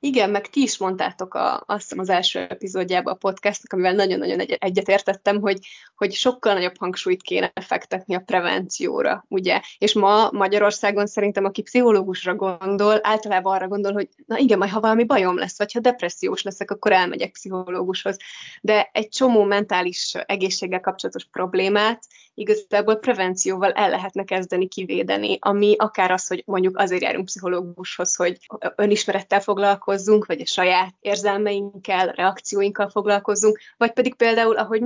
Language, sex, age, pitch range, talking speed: Hungarian, female, 20-39, 185-210 Hz, 140 wpm